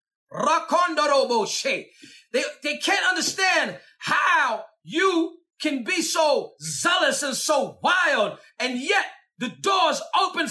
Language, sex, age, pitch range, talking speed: English, male, 40-59, 265-345 Hz, 105 wpm